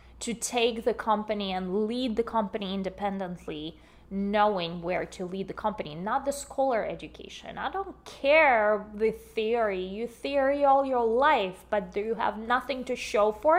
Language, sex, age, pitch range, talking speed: English, female, 20-39, 205-260 Hz, 165 wpm